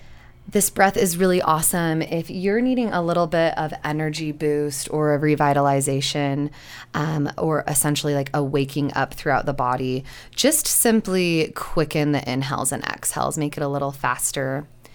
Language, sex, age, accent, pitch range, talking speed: English, female, 20-39, American, 130-165 Hz, 155 wpm